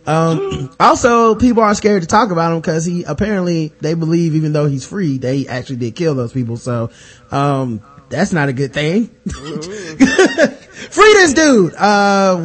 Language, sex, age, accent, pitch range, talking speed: English, male, 20-39, American, 125-180 Hz, 170 wpm